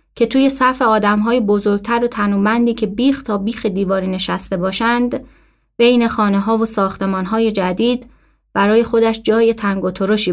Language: Persian